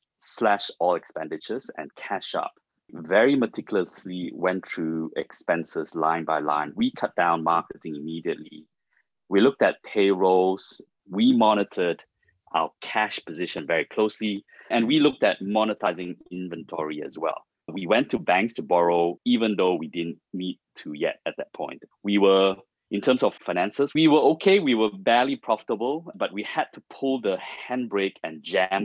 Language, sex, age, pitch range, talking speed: English, male, 20-39, 85-115 Hz, 160 wpm